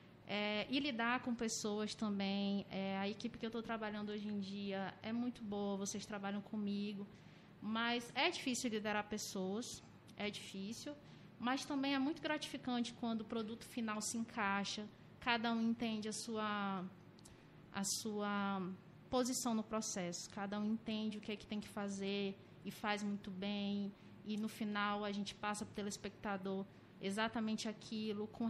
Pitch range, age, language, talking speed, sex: 205-235 Hz, 20-39, Portuguese, 160 wpm, female